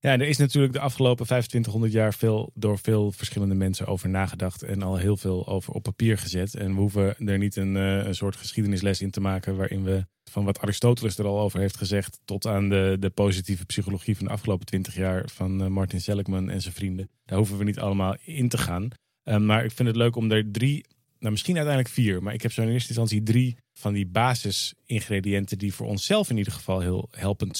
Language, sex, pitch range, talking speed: Dutch, male, 100-120 Hz, 220 wpm